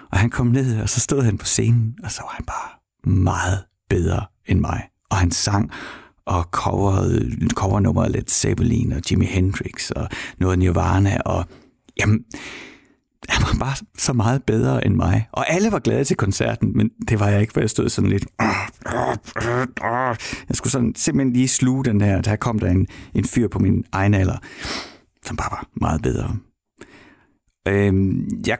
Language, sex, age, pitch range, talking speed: Danish, male, 60-79, 100-125 Hz, 175 wpm